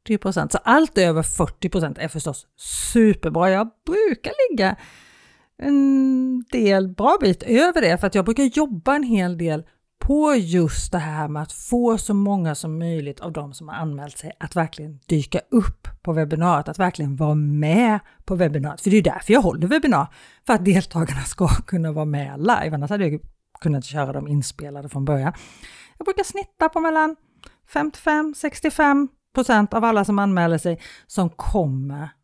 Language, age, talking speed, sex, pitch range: Swedish, 40-59, 170 wpm, female, 160-235 Hz